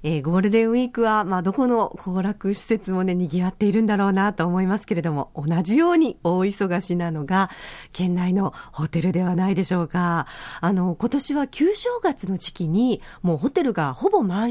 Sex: female